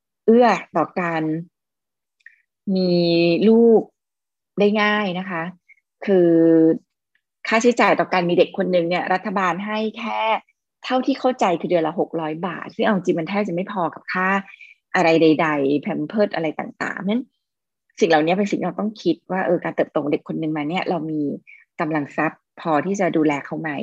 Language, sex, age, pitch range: Thai, female, 20-39, 160-215 Hz